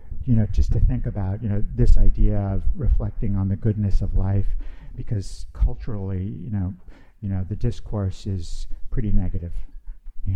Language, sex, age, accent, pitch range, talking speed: English, male, 60-79, American, 95-110 Hz, 170 wpm